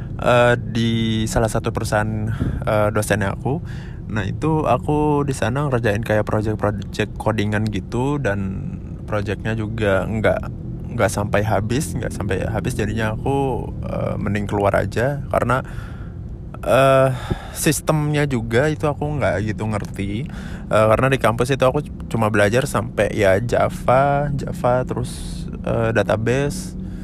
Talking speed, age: 130 wpm, 20-39